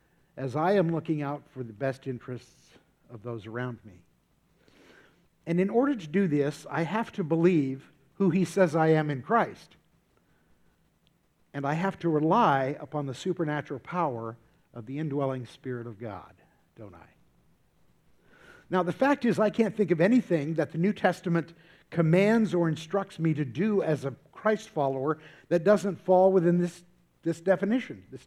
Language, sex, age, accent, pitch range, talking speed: English, male, 50-69, American, 145-190 Hz, 165 wpm